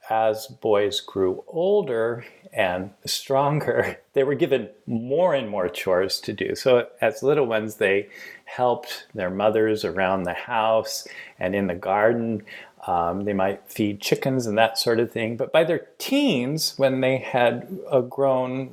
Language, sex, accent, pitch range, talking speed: English, male, American, 110-145 Hz, 155 wpm